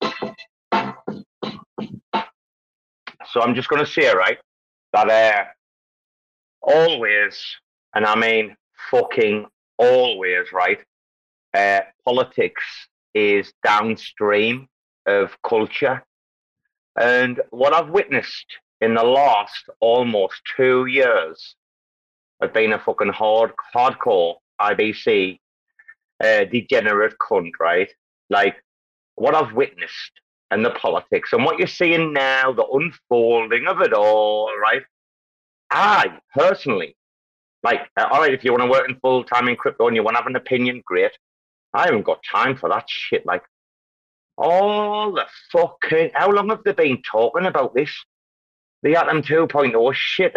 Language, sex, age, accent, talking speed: English, male, 30-49, British, 125 wpm